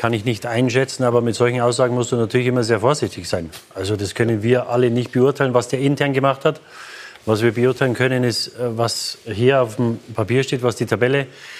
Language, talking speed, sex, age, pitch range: German, 215 wpm, male, 30-49, 120-135 Hz